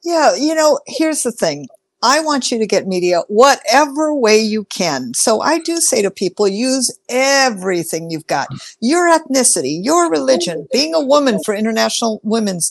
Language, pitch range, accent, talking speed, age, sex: English, 200-275 Hz, American, 170 wpm, 50-69, female